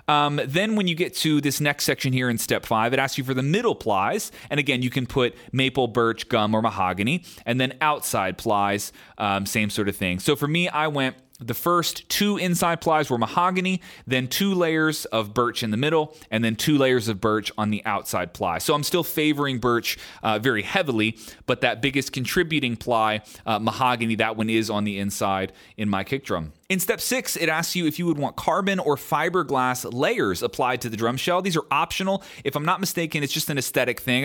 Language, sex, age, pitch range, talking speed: English, male, 30-49, 115-155 Hz, 220 wpm